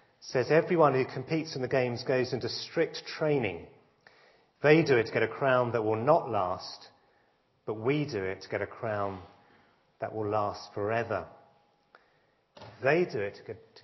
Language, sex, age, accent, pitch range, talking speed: English, male, 30-49, British, 120-155 Hz, 165 wpm